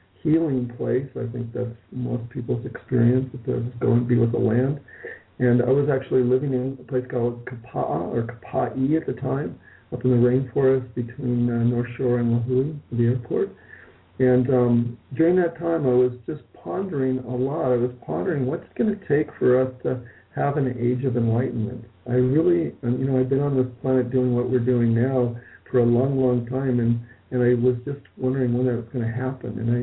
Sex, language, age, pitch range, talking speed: male, English, 50-69, 120-135 Hz, 205 wpm